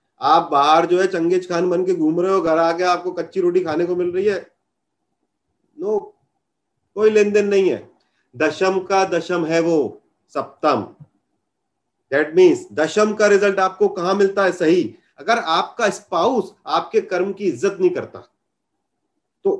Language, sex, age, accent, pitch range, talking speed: Hindi, male, 40-59, native, 165-240 Hz, 160 wpm